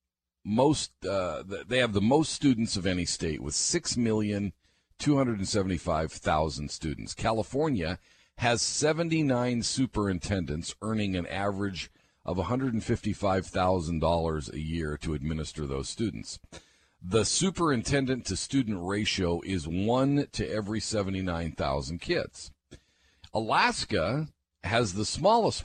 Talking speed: 95 wpm